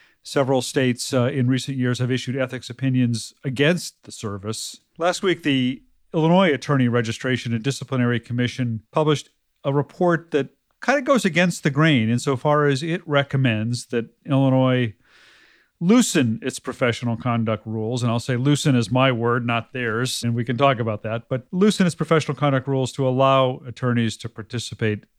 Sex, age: male, 40-59